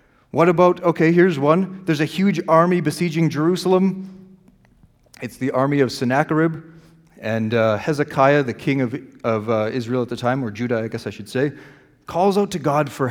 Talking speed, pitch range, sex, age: 185 wpm, 125-165 Hz, male, 40-59